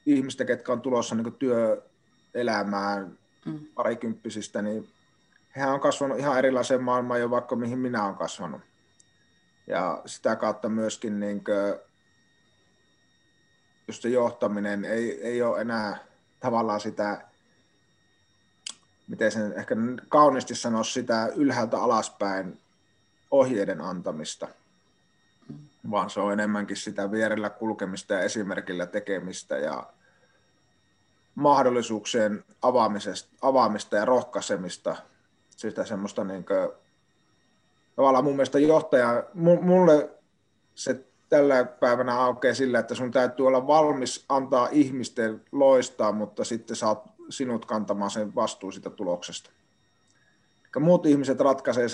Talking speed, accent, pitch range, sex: 105 wpm, native, 105-130 Hz, male